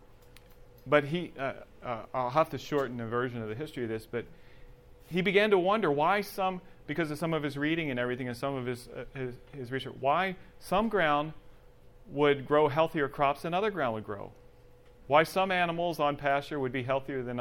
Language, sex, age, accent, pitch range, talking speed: English, male, 40-59, American, 125-150 Hz, 205 wpm